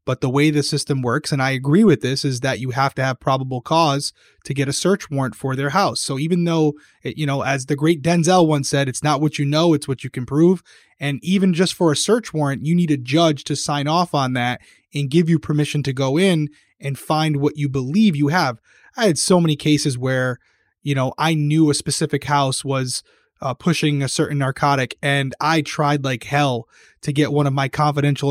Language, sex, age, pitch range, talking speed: English, male, 20-39, 135-155 Hz, 230 wpm